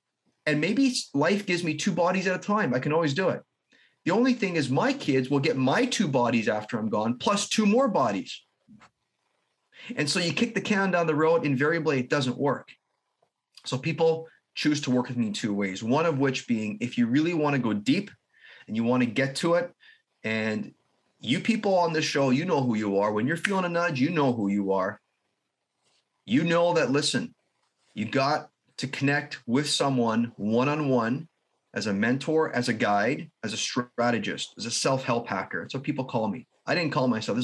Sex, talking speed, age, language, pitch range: male, 205 wpm, 30-49, English, 120-165 Hz